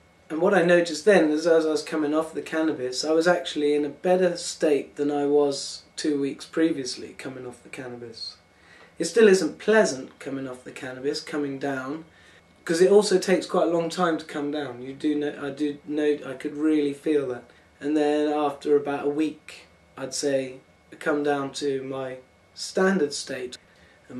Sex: male